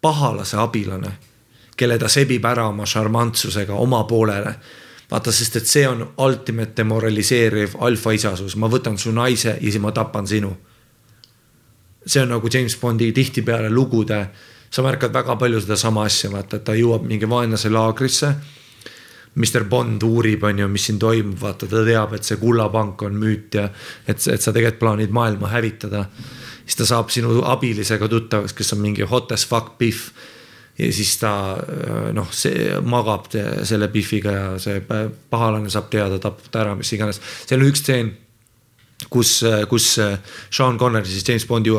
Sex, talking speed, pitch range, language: male, 160 wpm, 105-120 Hz, English